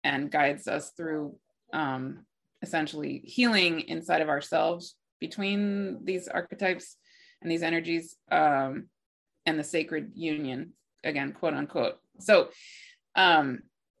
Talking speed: 110 wpm